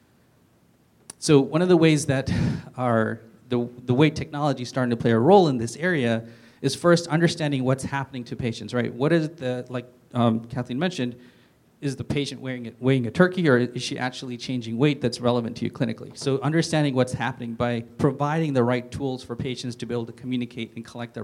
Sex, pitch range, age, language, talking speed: male, 120-140 Hz, 30-49, English, 205 wpm